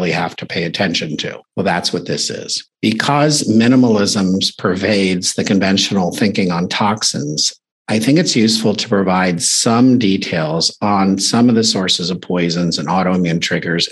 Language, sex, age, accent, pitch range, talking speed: English, male, 50-69, American, 90-110 Hz, 155 wpm